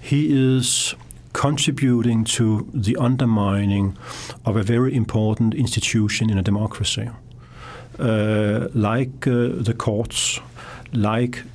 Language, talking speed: English, 105 wpm